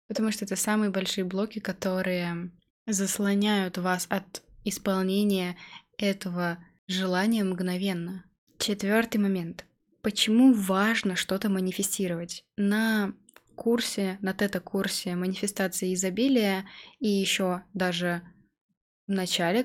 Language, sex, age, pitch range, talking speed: Russian, female, 20-39, 185-215 Hz, 95 wpm